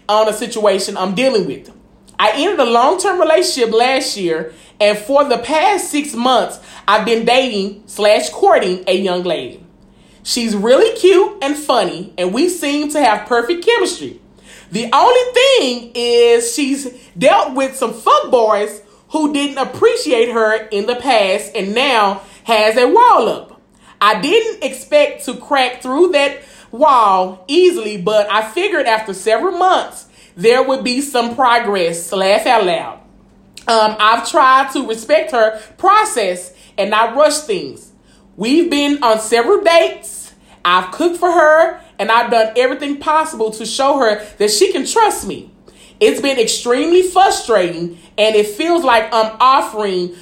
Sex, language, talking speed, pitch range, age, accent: male, English, 155 wpm, 215-310 Hz, 30-49, American